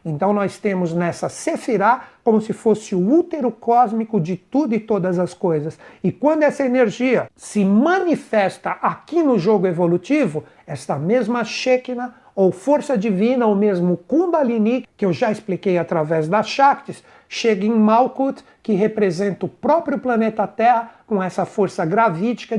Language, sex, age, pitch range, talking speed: Portuguese, male, 60-79, 195-255 Hz, 150 wpm